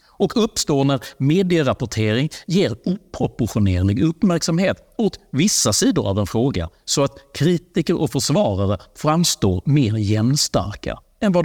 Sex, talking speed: male, 120 wpm